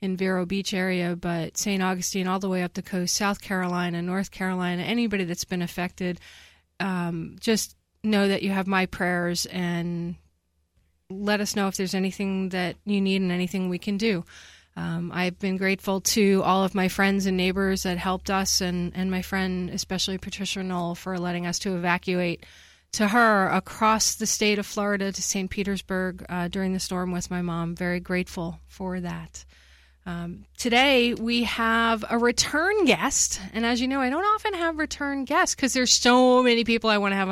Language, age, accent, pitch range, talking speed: English, 30-49, American, 180-215 Hz, 190 wpm